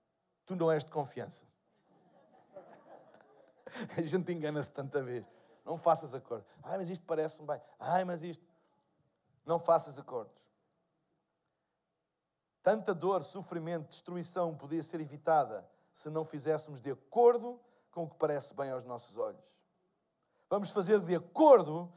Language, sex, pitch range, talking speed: Portuguese, male, 165-240 Hz, 130 wpm